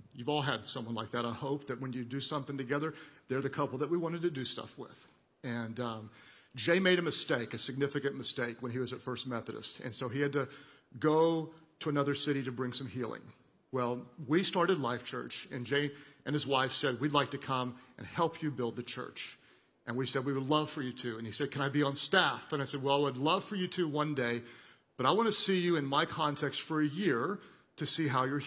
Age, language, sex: 50-69, Czech, male